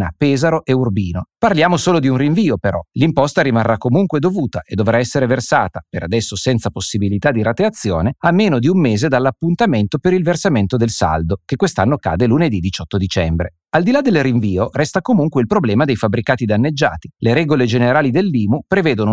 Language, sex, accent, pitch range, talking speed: Italian, male, native, 105-165 Hz, 180 wpm